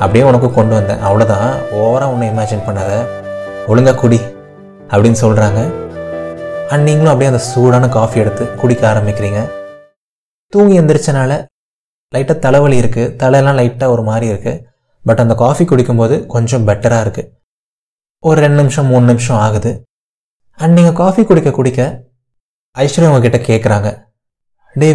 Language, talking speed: Tamil, 125 wpm